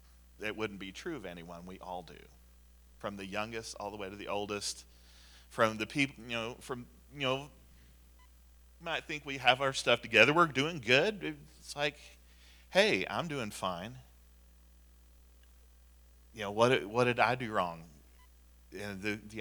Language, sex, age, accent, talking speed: English, male, 40-59, American, 165 wpm